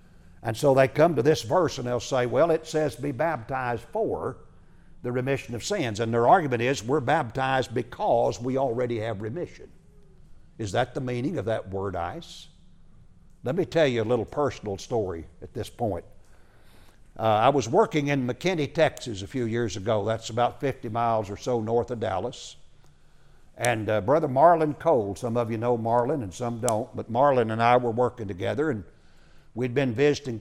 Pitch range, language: 110-135 Hz, English